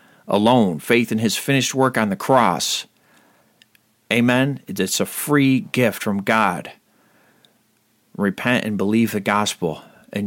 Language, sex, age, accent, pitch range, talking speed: English, male, 40-59, American, 105-140 Hz, 130 wpm